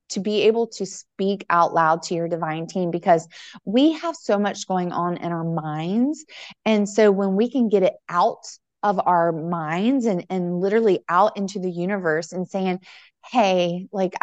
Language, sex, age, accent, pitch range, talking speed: English, female, 20-39, American, 170-210 Hz, 180 wpm